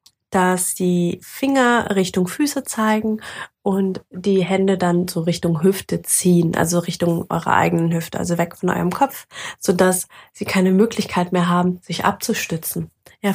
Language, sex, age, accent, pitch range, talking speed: German, female, 20-39, German, 170-195 Hz, 155 wpm